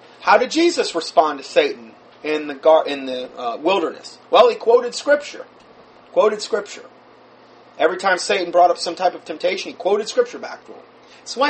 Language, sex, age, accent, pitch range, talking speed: English, male, 30-49, American, 160-230 Hz, 185 wpm